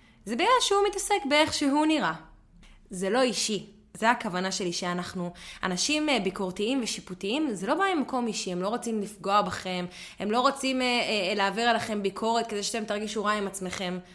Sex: female